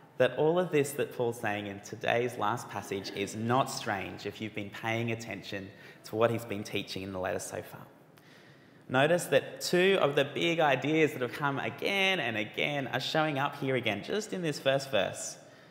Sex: male